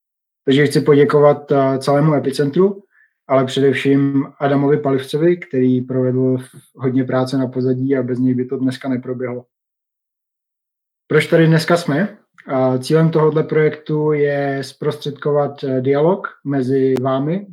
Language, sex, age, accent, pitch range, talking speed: Czech, male, 30-49, native, 130-145 Hz, 115 wpm